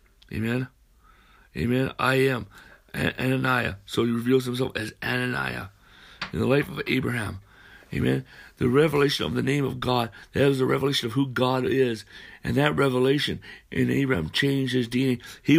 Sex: male